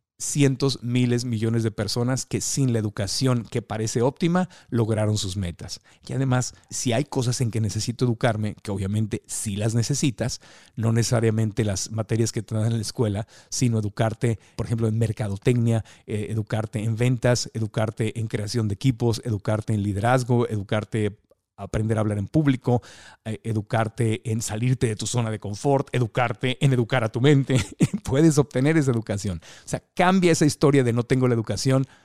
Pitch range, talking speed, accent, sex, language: 110-135 Hz, 170 wpm, Mexican, male, Spanish